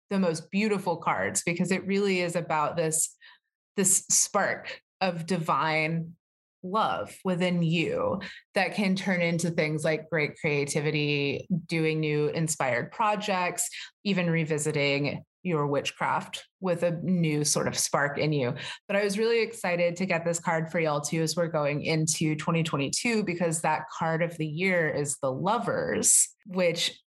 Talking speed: 150 wpm